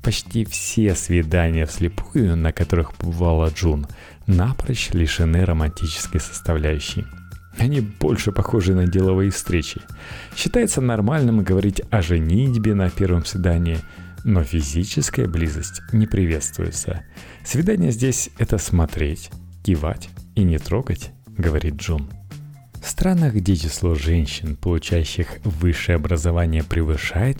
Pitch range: 80-105 Hz